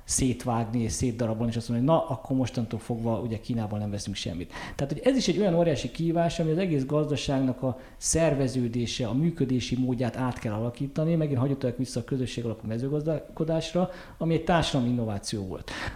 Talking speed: 180 wpm